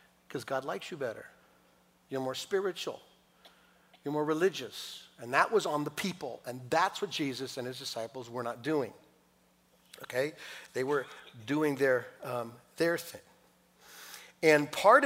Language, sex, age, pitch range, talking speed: English, male, 50-69, 125-165 Hz, 145 wpm